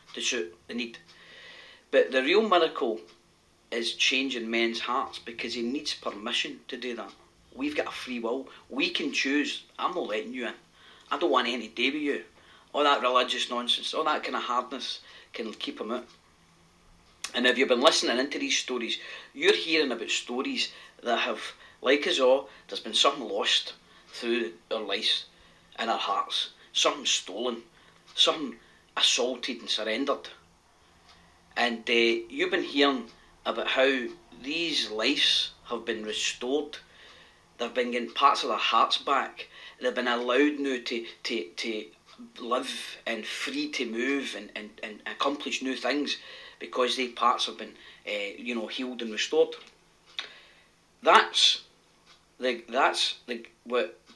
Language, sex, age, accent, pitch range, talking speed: English, male, 40-59, British, 115-150 Hz, 155 wpm